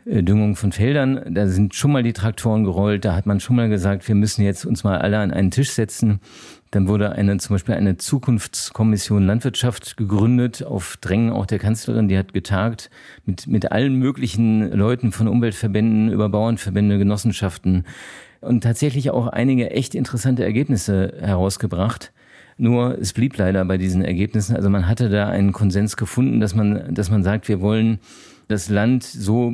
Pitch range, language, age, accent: 100-120 Hz, German, 50-69, German